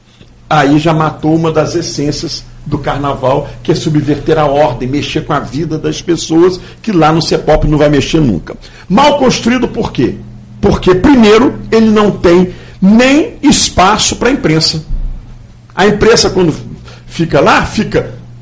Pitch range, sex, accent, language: 135-225 Hz, male, Brazilian, Portuguese